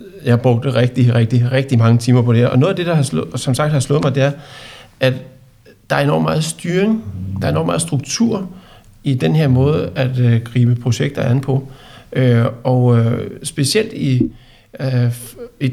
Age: 60-79